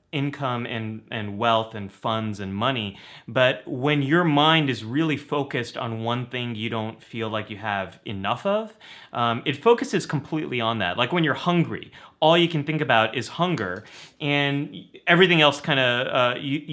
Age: 30-49